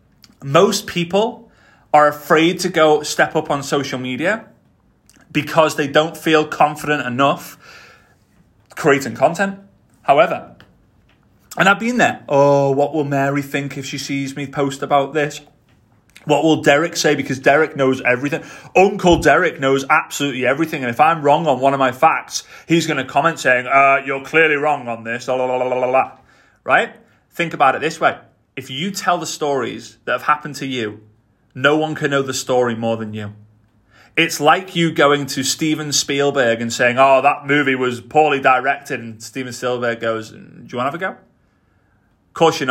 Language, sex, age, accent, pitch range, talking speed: English, male, 30-49, British, 125-155 Hz, 175 wpm